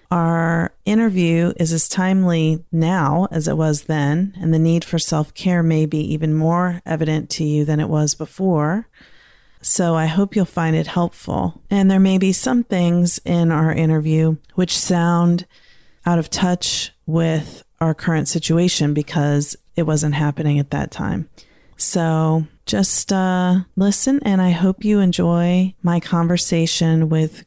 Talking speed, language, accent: 155 wpm, English, American